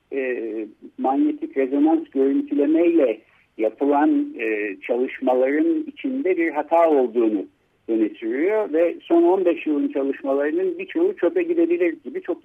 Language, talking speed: Turkish, 105 wpm